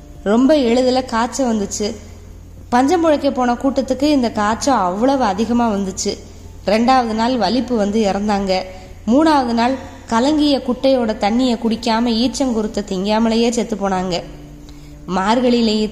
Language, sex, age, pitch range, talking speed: Tamil, female, 20-39, 205-250 Hz, 100 wpm